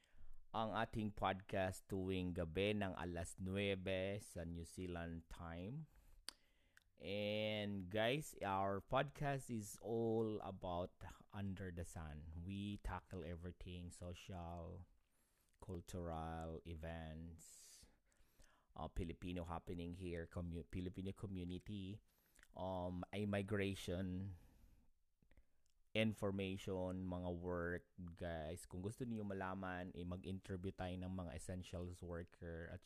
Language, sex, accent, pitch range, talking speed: Filipino, male, native, 85-100 Hz, 95 wpm